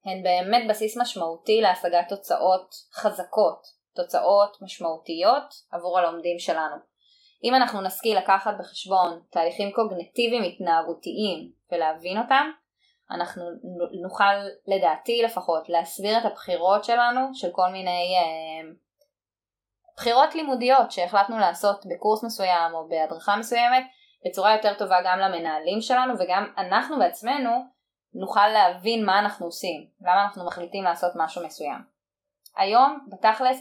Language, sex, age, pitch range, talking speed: Hebrew, female, 20-39, 175-235 Hz, 115 wpm